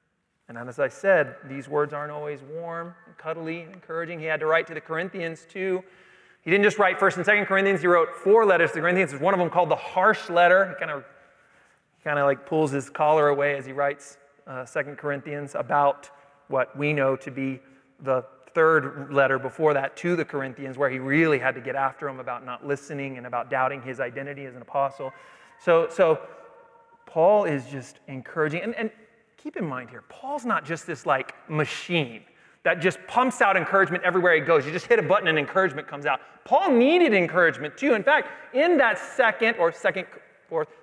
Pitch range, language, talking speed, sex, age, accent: 145-240 Hz, English, 205 wpm, male, 30-49, American